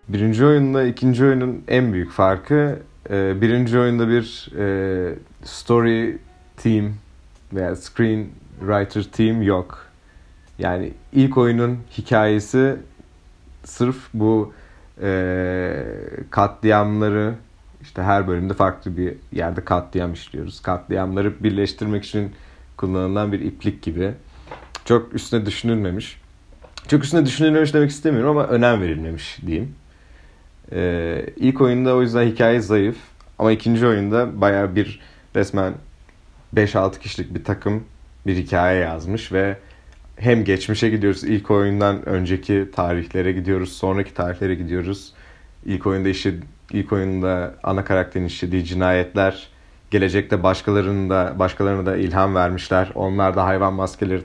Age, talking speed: 30-49, 115 wpm